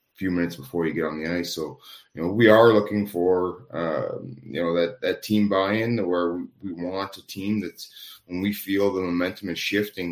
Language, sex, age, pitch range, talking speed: English, male, 30-49, 85-105 Hz, 210 wpm